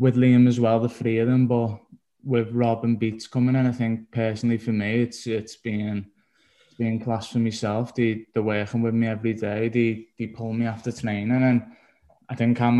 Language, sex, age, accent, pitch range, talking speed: English, male, 20-39, British, 115-120 Hz, 210 wpm